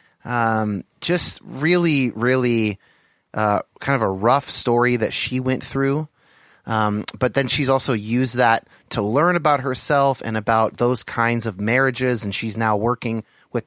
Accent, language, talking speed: American, English, 160 wpm